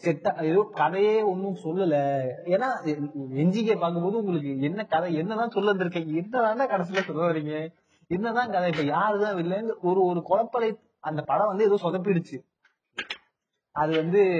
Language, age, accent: Tamil, 30-49, native